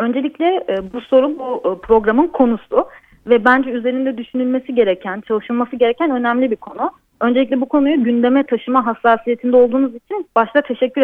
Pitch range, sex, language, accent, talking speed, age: 220-275 Hz, female, Turkish, native, 140 wpm, 30-49